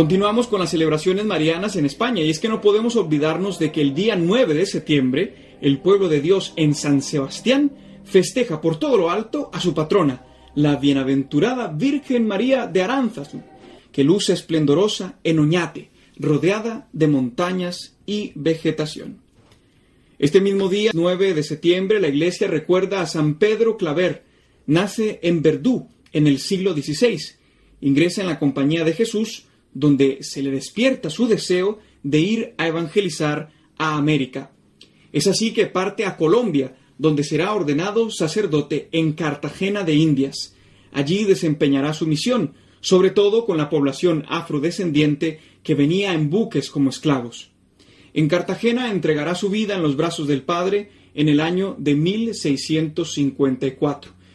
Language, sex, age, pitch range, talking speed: Spanish, male, 30-49, 145-195 Hz, 150 wpm